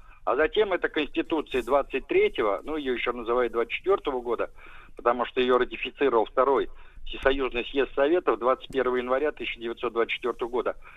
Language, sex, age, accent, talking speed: Russian, male, 50-69, native, 125 wpm